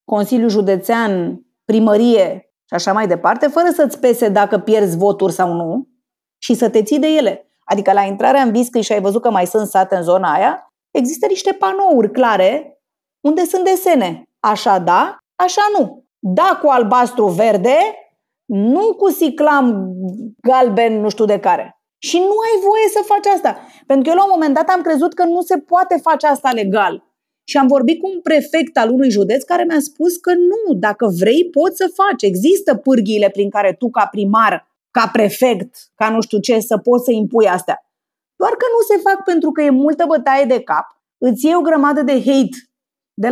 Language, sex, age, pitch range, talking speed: Romanian, female, 30-49, 220-320 Hz, 190 wpm